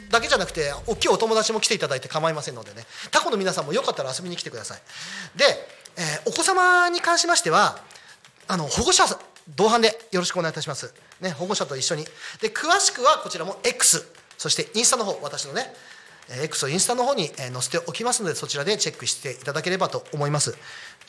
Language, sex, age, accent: Japanese, male, 40-59, native